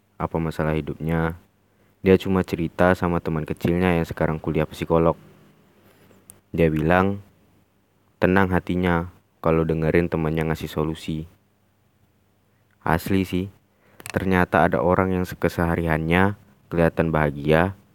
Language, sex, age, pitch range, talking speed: Indonesian, male, 20-39, 85-100 Hz, 105 wpm